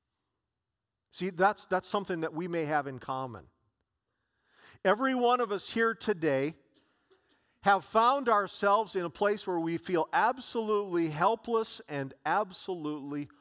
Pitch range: 185-230 Hz